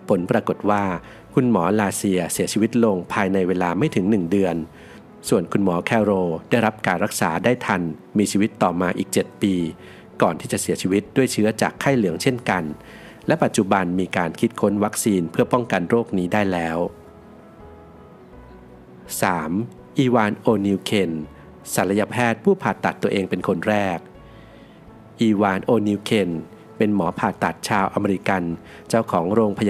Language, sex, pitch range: Thai, male, 90-110 Hz